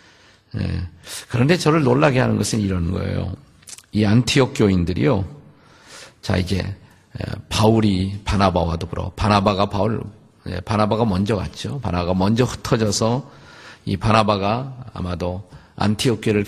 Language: Korean